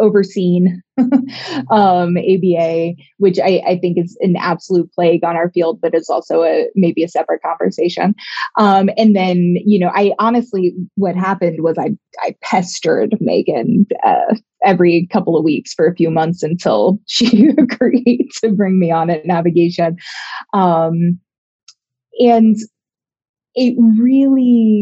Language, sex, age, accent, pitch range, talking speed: English, female, 20-39, American, 170-220 Hz, 140 wpm